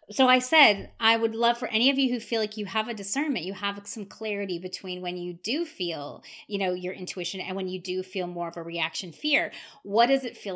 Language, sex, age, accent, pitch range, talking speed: English, female, 30-49, American, 180-230 Hz, 250 wpm